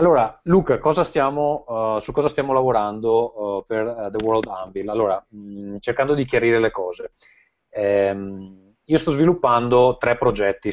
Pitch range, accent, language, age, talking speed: 100-130 Hz, native, Italian, 30-49, 155 wpm